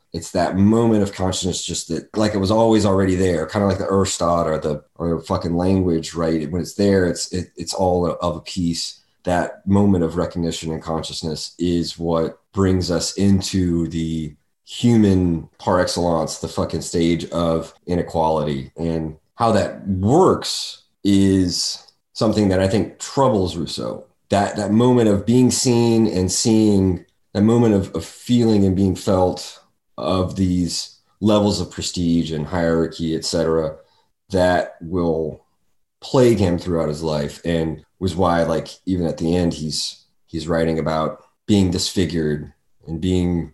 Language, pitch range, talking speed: English, 80-100 Hz, 155 wpm